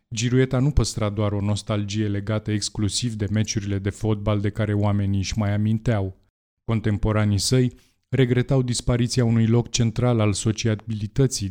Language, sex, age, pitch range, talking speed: Romanian, male, 20-39, 105-125 Hz, 140 wpm